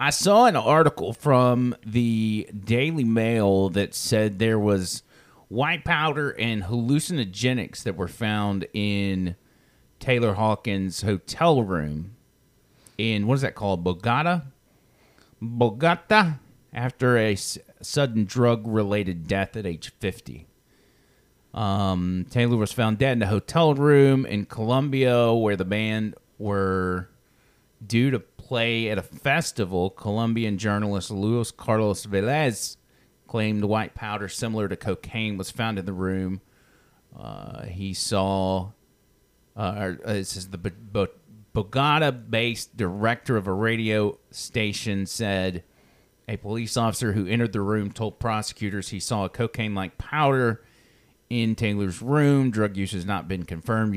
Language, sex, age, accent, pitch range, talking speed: English, male, 30-49, American, 100-120 Hz, 130 wpm